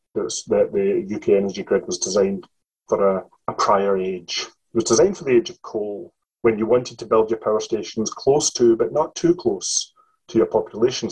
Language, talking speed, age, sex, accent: English, 200 wpm, 30-49, male, British